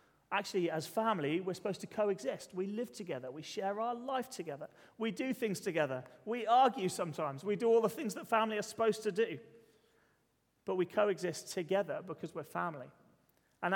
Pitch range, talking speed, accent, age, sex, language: 150-200 Hz, 180 wpm, British, 30-49, male, English